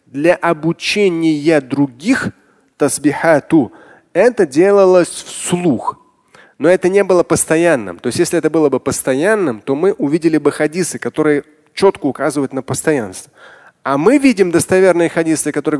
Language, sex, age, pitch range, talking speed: Russian, male, 20-39, 150-200 Hz, 130 wpm